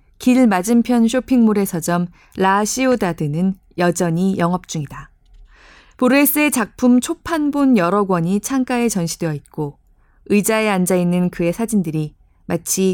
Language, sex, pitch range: Korean, female, 170-230 Hz